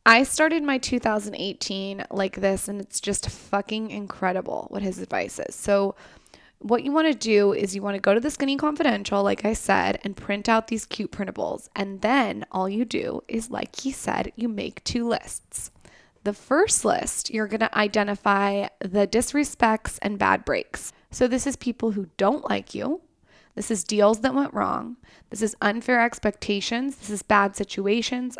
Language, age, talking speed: English, 10-29, 180 wpm